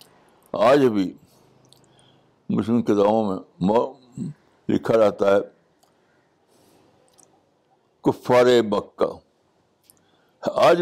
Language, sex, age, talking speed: Urdu, male, 60-79, 55 wpm